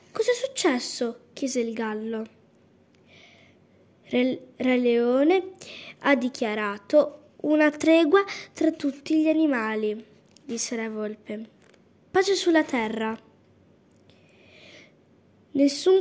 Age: 10-29